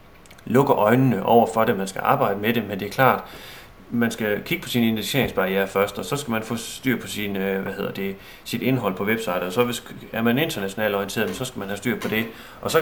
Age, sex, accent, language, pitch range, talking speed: 30-49, male, native, Danish, 100-125 Hz, 245 wpm